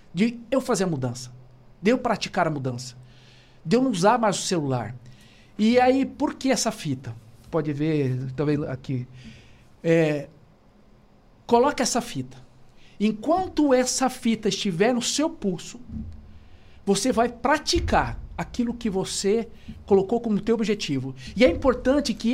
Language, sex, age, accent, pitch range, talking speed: Portuguese, male, 60-79, Brazilian, 155-240 Hz, 140 wpm